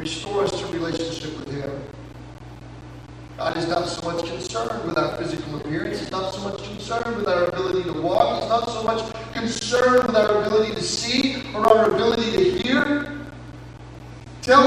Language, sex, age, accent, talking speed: English, male, 40-59, American, 170 wpm